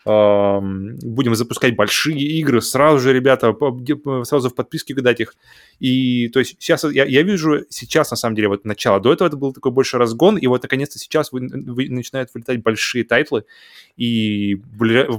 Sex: male